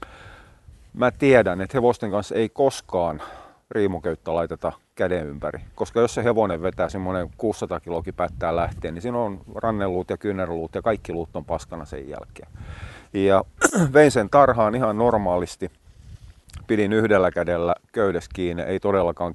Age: 40-59